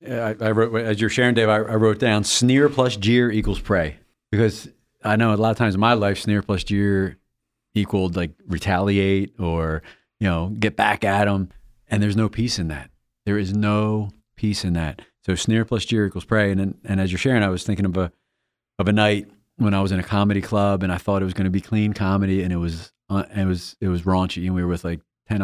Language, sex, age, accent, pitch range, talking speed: English, male, 30-49, American, 95-110 Hz, 240 wpm